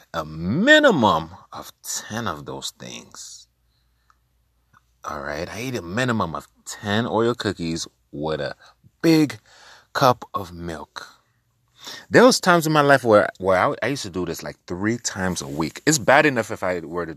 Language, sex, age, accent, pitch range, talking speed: English, male, 30-49, American, 75-115 Hz, 175 wpm